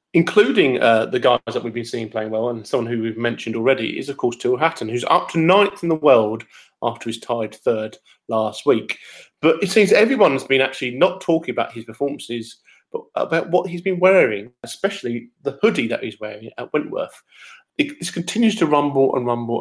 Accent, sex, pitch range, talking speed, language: British, male, 115-160 Hz, 200 wpm, English